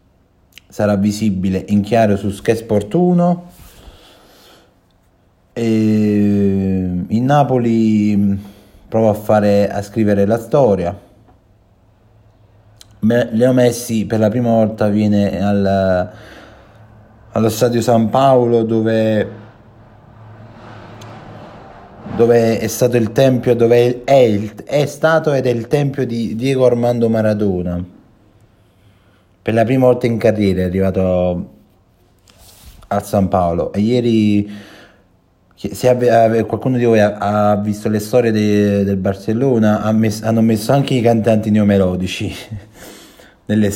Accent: native